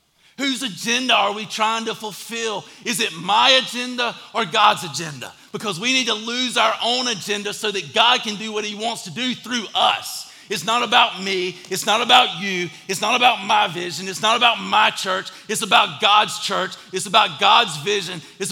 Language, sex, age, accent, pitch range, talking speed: English, male, 40-59, American, 200-250 Hz, 200 wpm